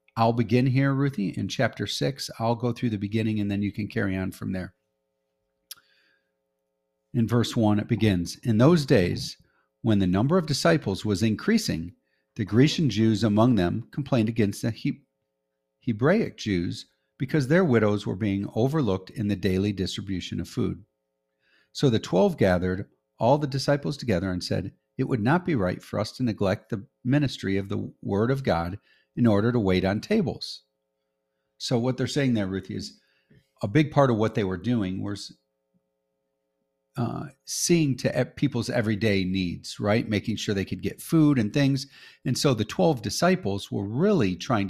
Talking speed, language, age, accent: 175 wpm, English, 50-69, American